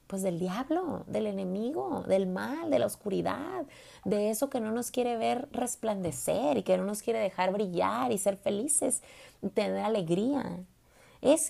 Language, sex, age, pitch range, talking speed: Spanish, female, 30-49, 200-260 Hz, 160 wpm